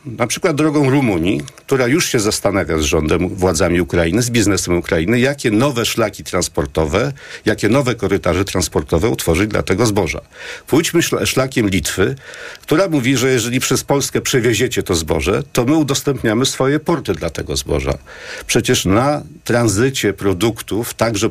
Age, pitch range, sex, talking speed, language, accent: 50-69, 95-135 Hz, male, 145 wpm, Polish, native